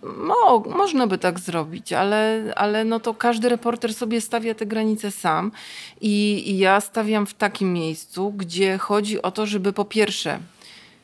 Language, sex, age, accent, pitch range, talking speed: Polish, female, 30-49, native, 195-230 Hz, 165 wpm